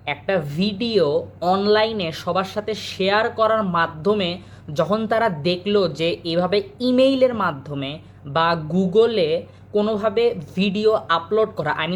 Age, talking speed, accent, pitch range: 20-39, 90 wpm, native, 170-225 Hz